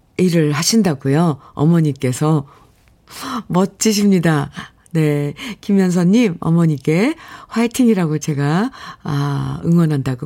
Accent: native